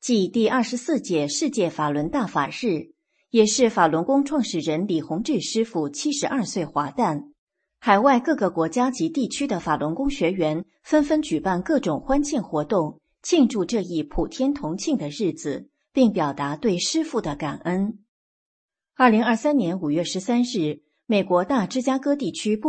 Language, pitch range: English, 170-275 Hz